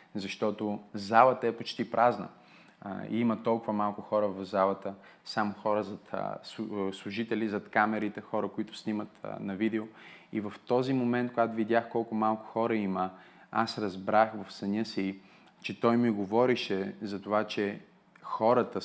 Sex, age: male, 30-49